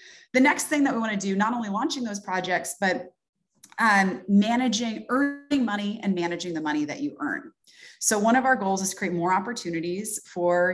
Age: 30-49